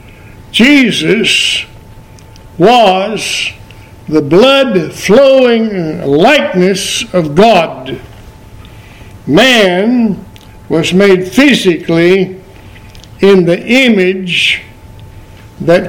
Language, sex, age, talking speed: English, male, 60-79, 55 wpm